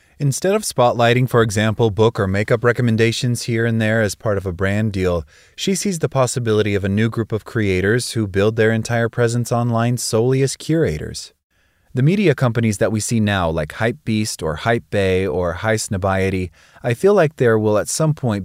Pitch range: 95-120 Hz